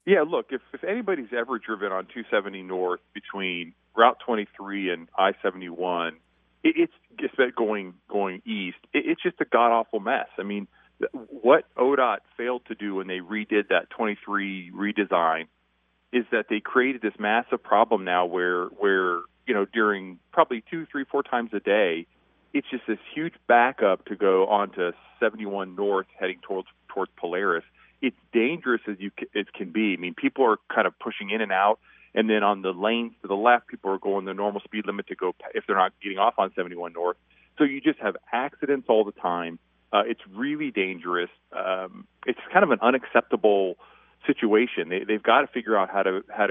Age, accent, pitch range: 40-59, American, 90-115 Hz